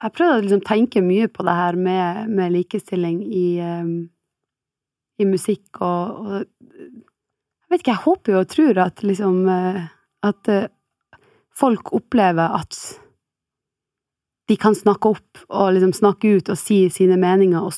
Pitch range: 180-225 Hz